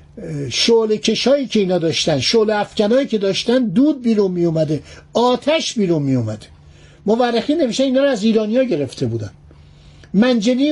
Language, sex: Persian, male